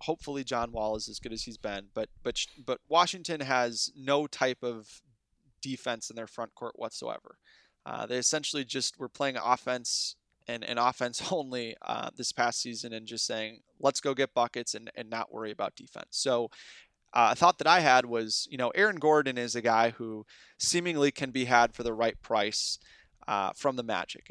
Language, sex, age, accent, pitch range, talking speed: English, male, 20-39, American, 115-135 Hz, 195 wpm